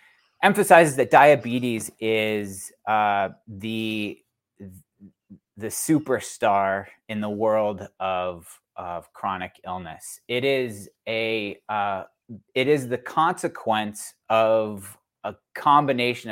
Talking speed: 95 wpm